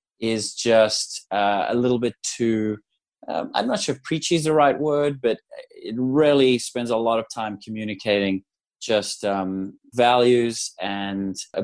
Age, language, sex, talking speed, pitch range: 20-39, English, male, 160 wpm, 95-115 Hz